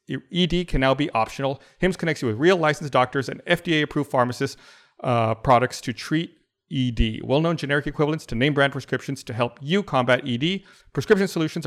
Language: English